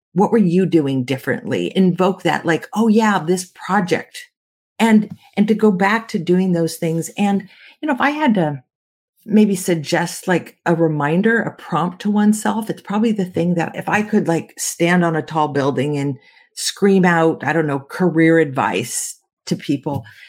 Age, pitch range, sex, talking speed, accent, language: 50-69, 165-220 Hz, female, 180 wpm, American, English